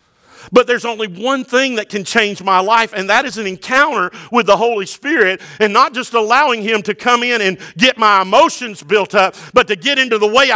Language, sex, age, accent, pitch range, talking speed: English, male, 50-69, American, 200-255 Hz, 220 wpm